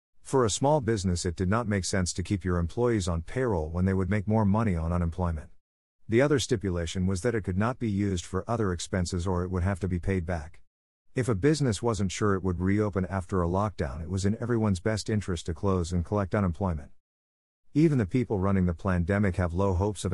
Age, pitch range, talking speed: 50-69, 90-110 Hz, 225 wpm